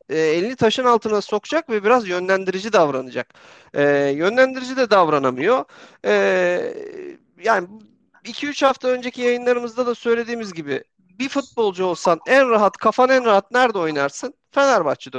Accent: native